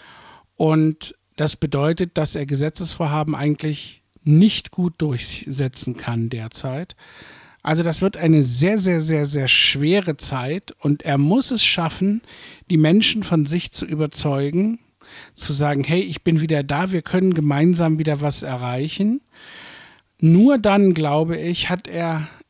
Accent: German